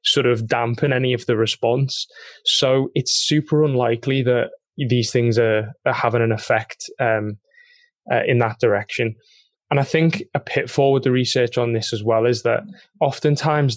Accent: British